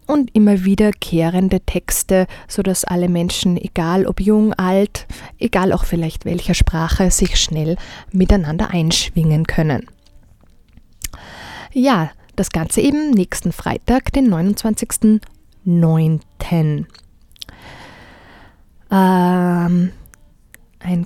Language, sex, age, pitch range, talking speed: German, female, 20-39, 175-210 Hz, 90 wpm